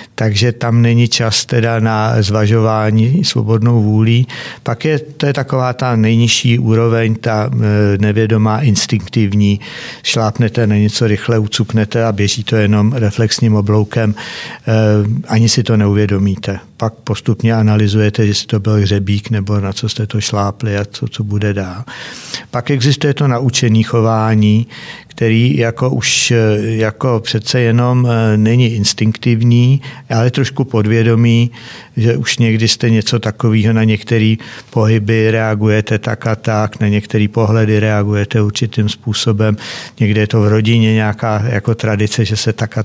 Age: 60-79